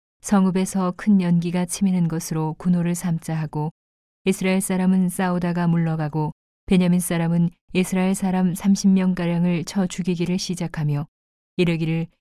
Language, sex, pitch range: Korean, female, 160-185 Hz